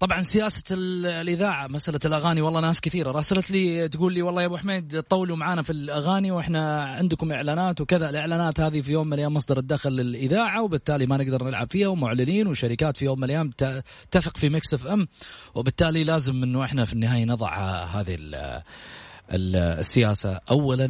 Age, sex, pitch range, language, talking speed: 30-49, male, 105-170 Hz, Arabic, 170 wpm